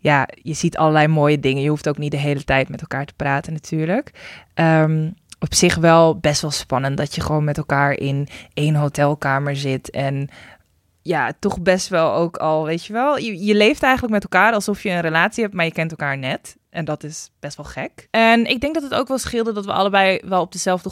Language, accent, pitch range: Dutch, Dutch, 150-175 Hz